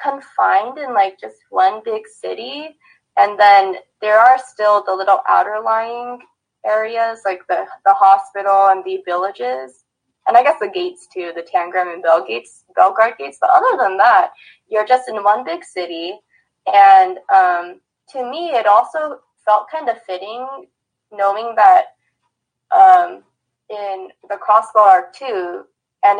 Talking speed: 145 wpm